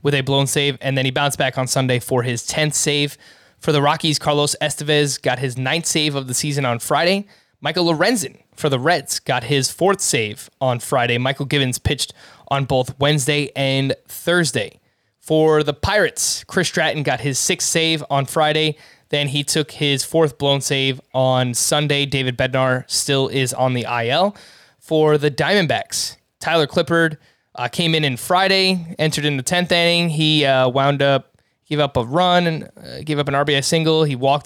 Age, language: 20-39, English